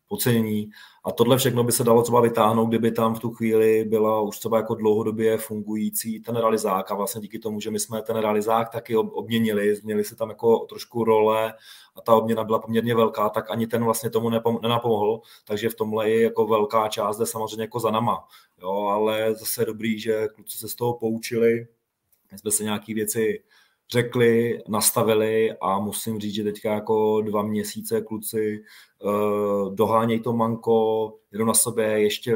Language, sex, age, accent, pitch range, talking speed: Czech, male, 30-49, native, 105-115 Hz, 180 wpm